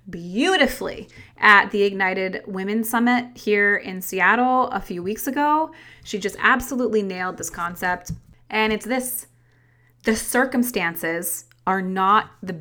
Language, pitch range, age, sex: English, 180-240 Hz, 30-49, female